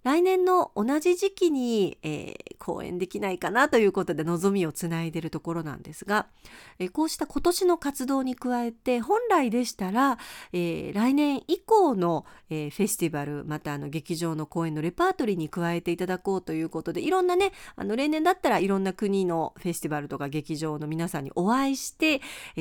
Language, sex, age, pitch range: Japanese, female, 40-59, 170-255 Hz